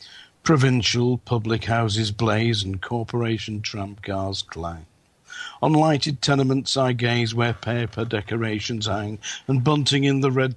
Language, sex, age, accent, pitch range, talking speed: English, male, 50-69, British, 100-130 Hz, 125 wpm